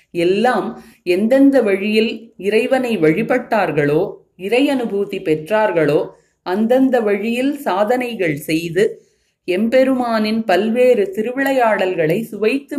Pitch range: 190-250 Hz